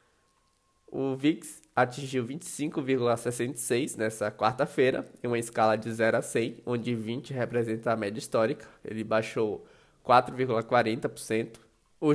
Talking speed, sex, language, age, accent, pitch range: 115 wpm, male, Portuguese, 20-39, Brazilian, 120-145 Hz